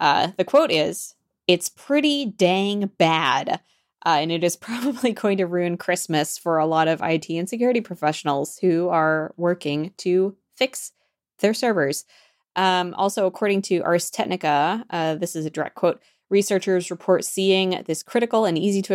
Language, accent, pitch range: English, American, 155-195 Hz